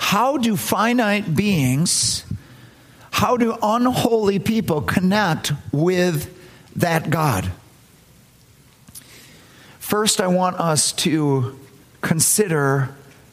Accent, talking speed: American, 80 wpm